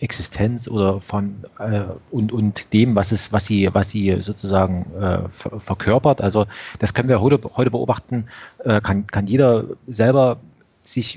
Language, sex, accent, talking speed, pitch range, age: German, male, German, 155 wpm, 100-120 Hz, 30-49